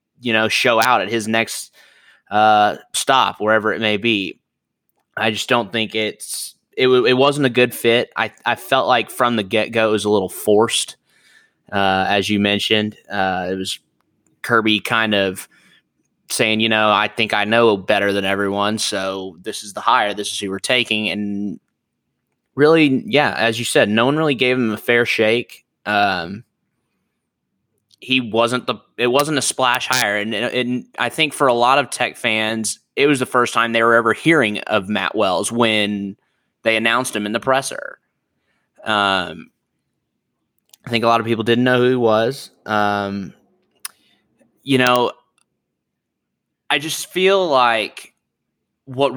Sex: male